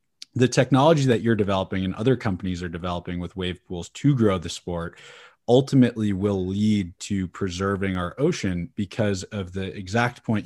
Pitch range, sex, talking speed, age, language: 95-115 Hz, male, 165 wpm, 20-39, English